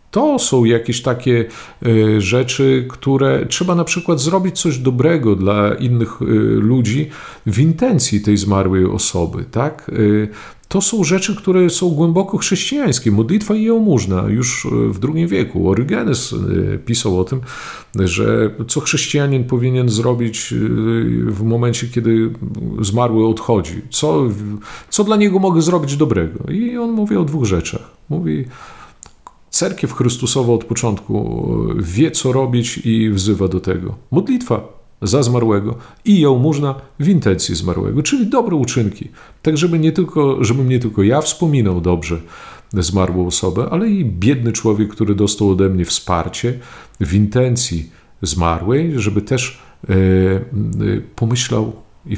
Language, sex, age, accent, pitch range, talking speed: Polish, male, 50-69, native, 105-150 Hz, 130 wpm